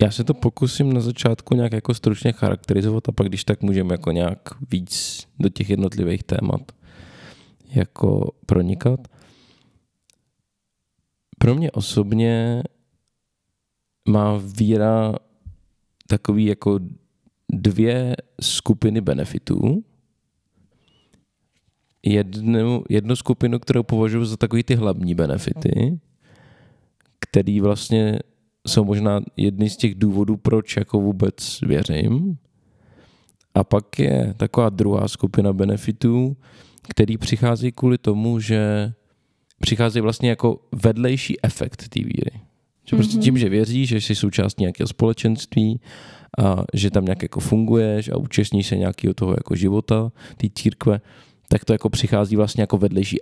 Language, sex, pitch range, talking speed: Czech, male, 100-120 Hz, 120 wpm